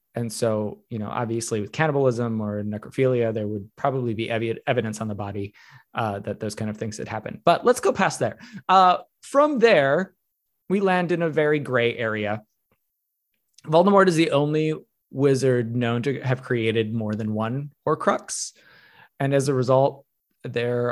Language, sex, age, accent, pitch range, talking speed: English, male, 20-39, American, 115-145 Hz, 165 wpm